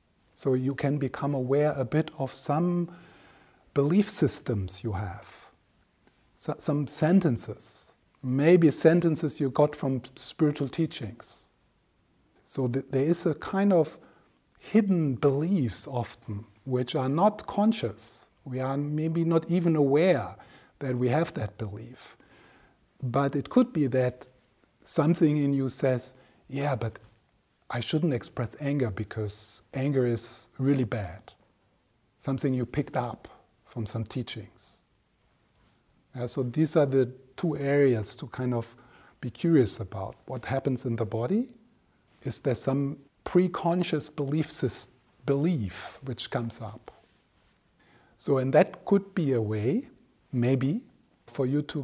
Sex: male